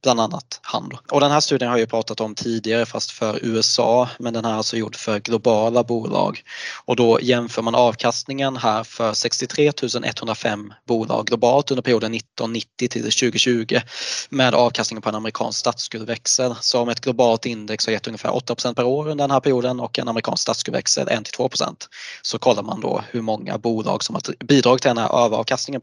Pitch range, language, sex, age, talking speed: 110-125 Hz, Swedish, male, 20-39, 180 wpm